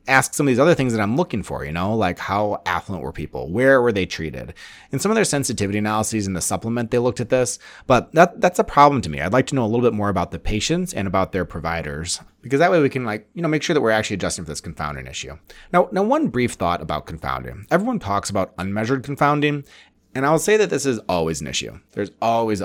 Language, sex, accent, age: English, male, American, 30-49